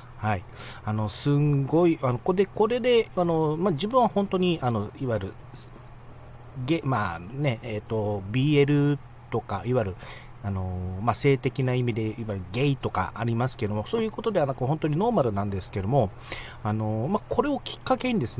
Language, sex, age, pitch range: Japanese, male, 40-59, 105-145 Hz